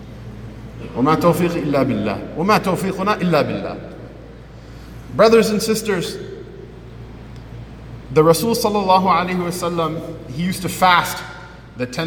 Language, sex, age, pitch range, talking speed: English, male, 50-69, 140-175 Hz, 110 wpm